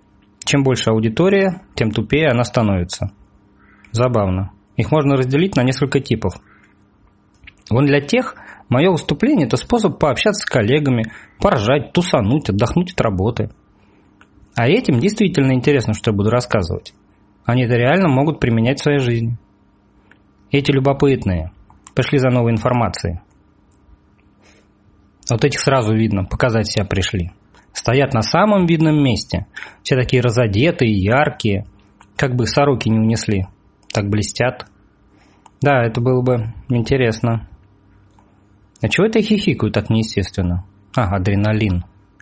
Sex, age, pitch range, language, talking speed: male, 20-39, 100-140 Hz, Russian, 125 wpm